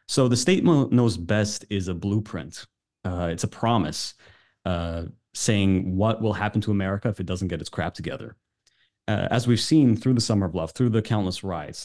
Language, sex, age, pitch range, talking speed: English, male, 30-49, 95-120 Hz, 195 wpm